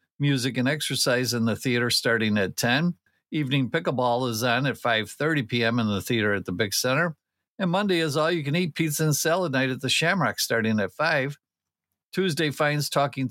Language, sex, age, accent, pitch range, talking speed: English, male, 50-69, American, 120-155 Hz, 180 wpm